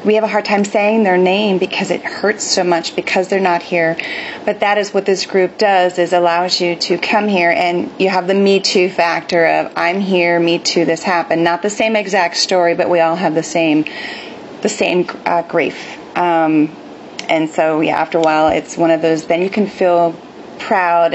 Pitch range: 170-205 Hz